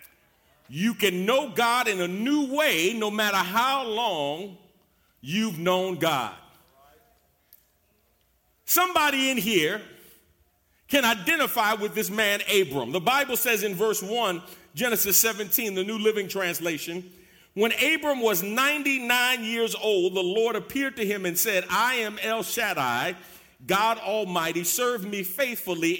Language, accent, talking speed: English, American, 135 wpm